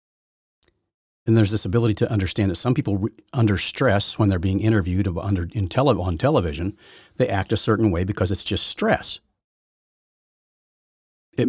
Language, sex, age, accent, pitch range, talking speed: English, male, 50-69, American, 95-125 Hz, 155 wpm